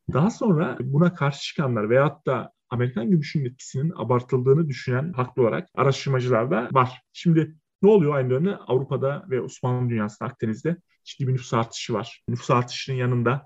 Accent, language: native, Turkish